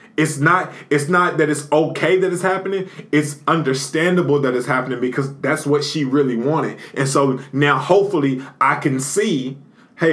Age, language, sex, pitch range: 20-39, English, male, 145-210 Hz